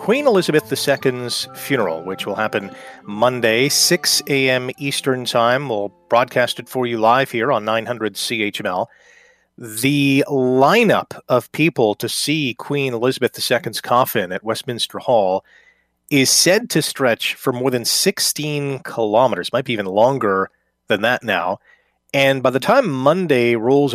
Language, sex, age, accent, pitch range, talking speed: English, male, 40-59, American, 115-140 Hz, 145 wpm